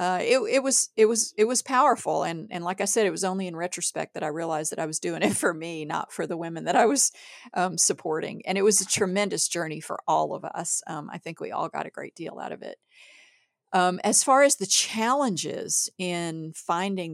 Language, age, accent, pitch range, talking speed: English, 50-69, American, 155-195 Hz, 240 wpm